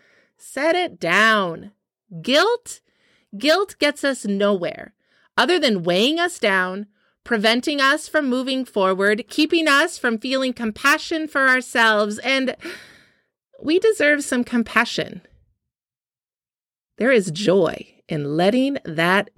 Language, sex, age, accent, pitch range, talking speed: English, female, 30-49, American, 205-310 Hz, 110 wpm